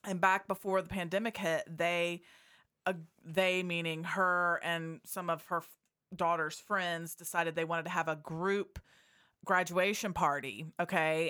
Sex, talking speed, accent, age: female, 145 wpm, American, 30-49